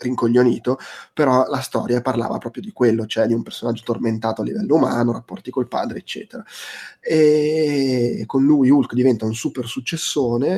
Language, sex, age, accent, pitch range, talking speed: Italian, male, 20-39, native, 120-140 Hz, 160 wpm